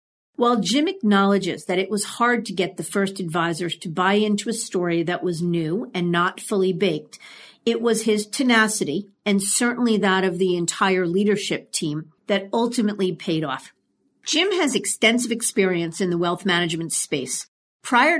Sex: female